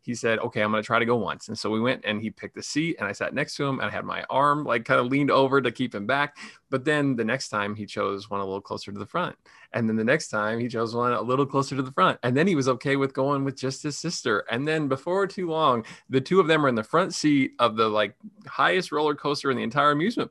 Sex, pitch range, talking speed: male, 110-145 Hz, 300 wpm